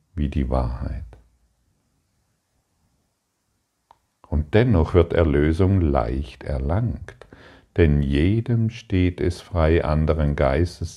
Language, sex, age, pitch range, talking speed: German, male, 50-69, 80-100 Hz, 90 wpm